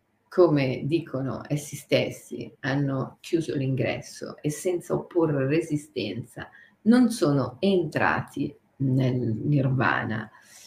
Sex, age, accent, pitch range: female, 50-69, native, 145-180 Hz